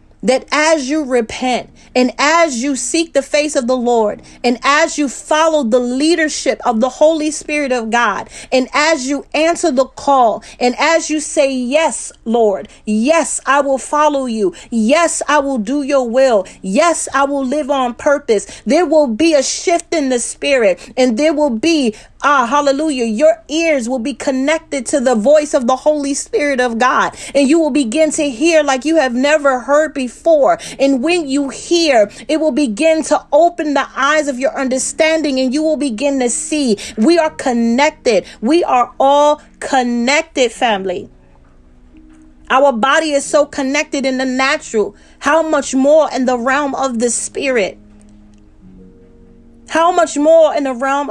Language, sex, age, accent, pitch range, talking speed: English, female, 40-59, American, 250-310 Hz, 170 wpm